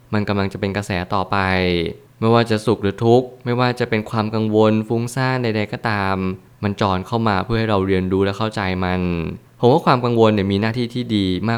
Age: 20-39